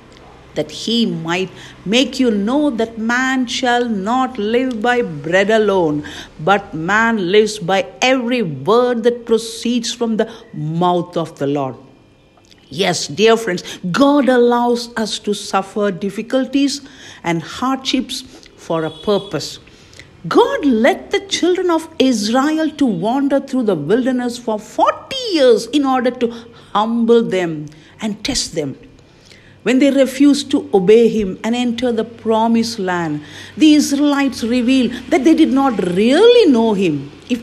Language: English